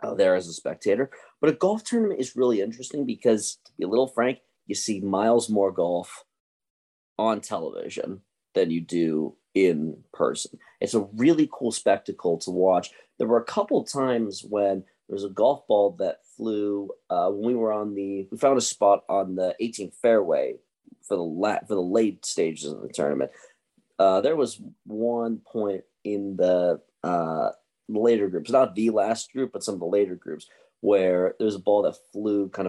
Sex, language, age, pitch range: male, English, 30-49, 90-115 Hz